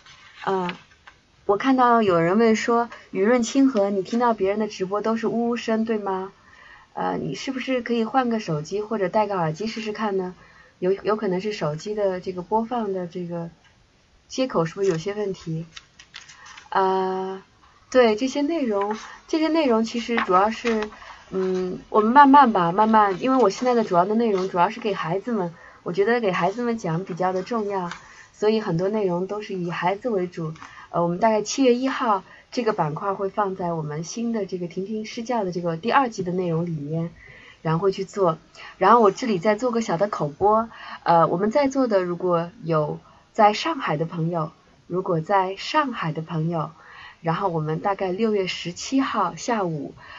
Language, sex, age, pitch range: Chinese, female, 20-39, 175-225 Hz